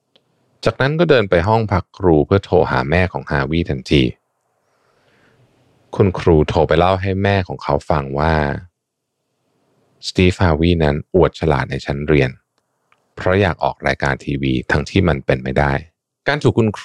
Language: Thai